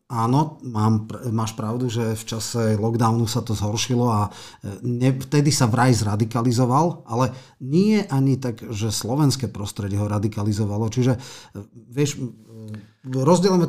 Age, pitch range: 40-59, 110-135 Hz